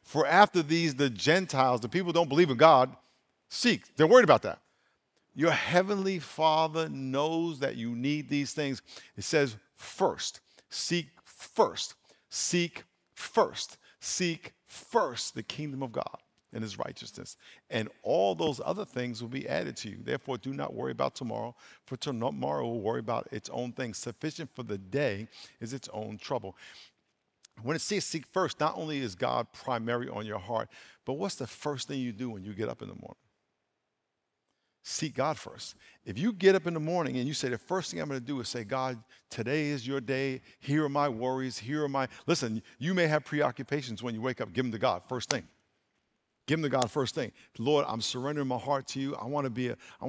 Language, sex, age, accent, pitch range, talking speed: English, male, 50-69, American, 120-155 Hz, 200 wpm